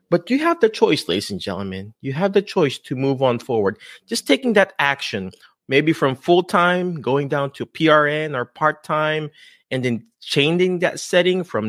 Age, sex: 30-49, male